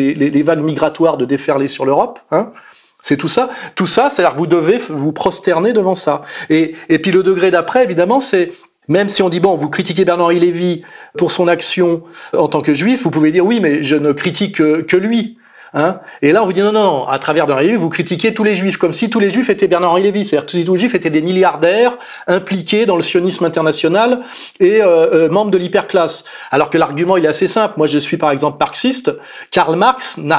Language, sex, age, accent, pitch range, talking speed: French, male, 40-59, French, 155-205 Hz, 240 wpm